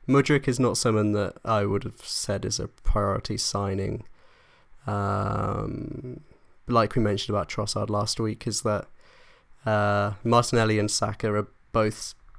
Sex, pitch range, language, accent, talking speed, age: male, 100-115 Hz, English, British, 140 wpm, 20-39